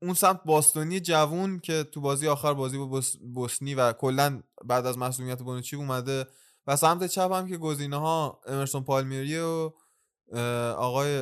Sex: male